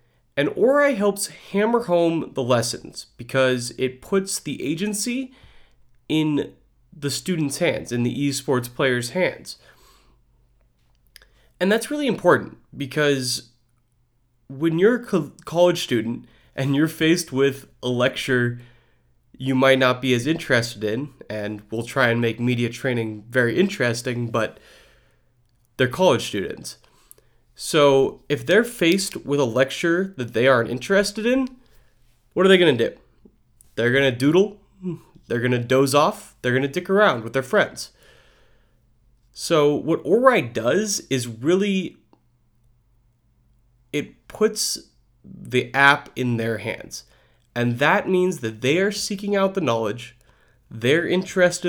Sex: male